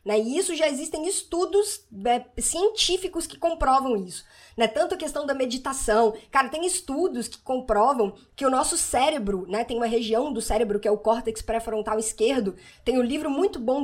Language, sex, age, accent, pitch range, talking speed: Portuguese, female, 20-39, Brazilian, 225-300 Hz, 185 wpm